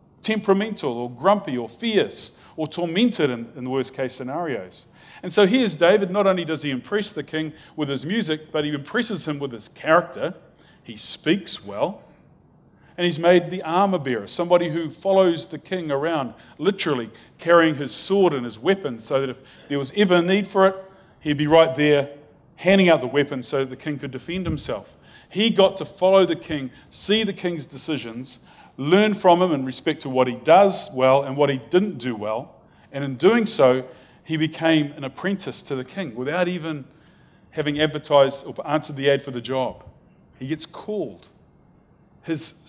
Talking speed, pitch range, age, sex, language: 185 wpm, 135-180 Hz, 40-59, male, English